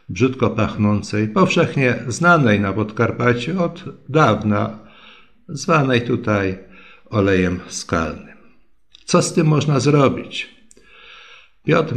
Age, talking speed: 50-69, 90 wpm